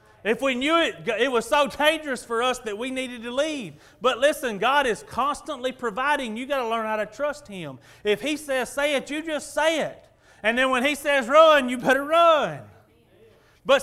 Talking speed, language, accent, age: 210 wpm, English, American, 30-49